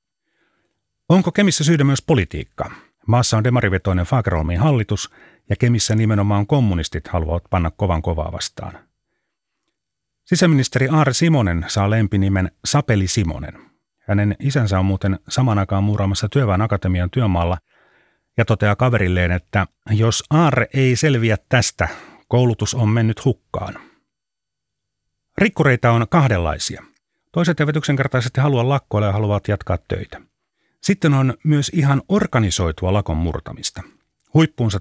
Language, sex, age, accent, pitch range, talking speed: Finnish, male, 30-49, native, 95-130 Hz, 115 wpm